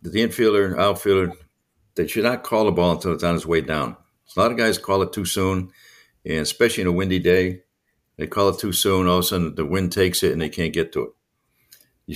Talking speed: 250 wpm